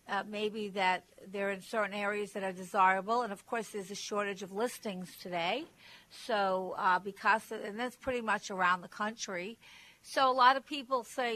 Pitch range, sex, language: 200-240 Hz, female, English